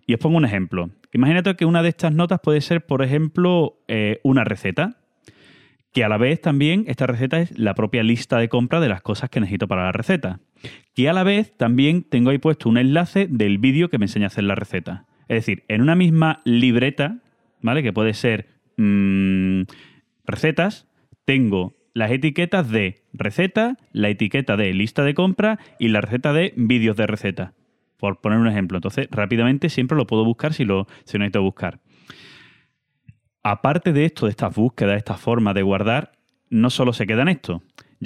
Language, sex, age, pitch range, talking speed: English, male, 30-49, 105-145 Hz, 190 wpm